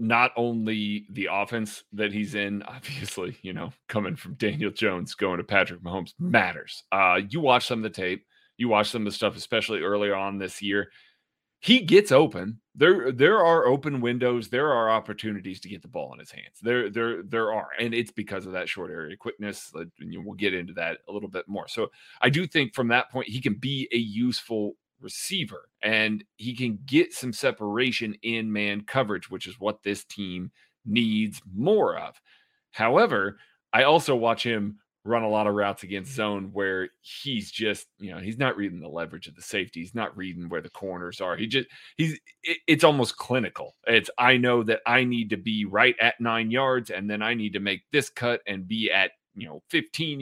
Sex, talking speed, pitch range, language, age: male, 200 wpm, 100-125 Hz, English, 30-49